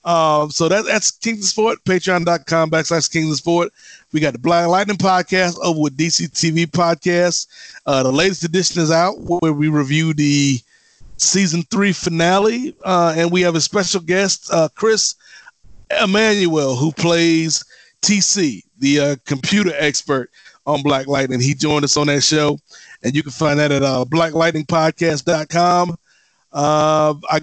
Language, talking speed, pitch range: English, 145 wpm, 150-185 Hz